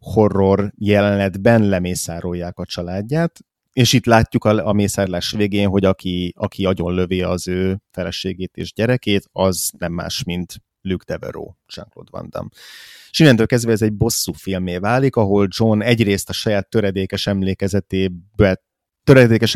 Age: 30-49